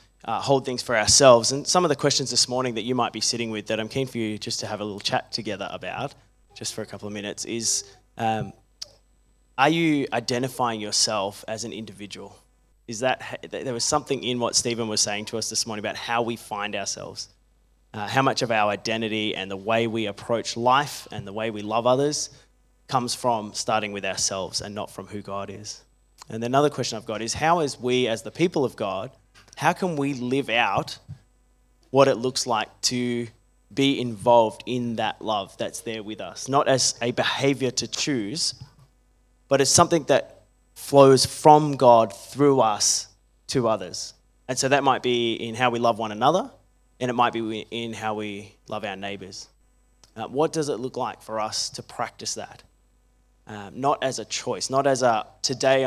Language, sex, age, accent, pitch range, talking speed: English, male, 20-39, Australian, 105-130 Hz, 200 wpm